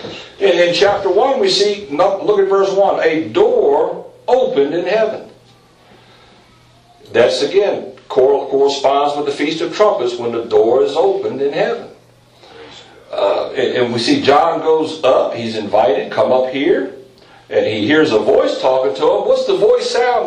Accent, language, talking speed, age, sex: American, English, 160 wpm, 60-79, male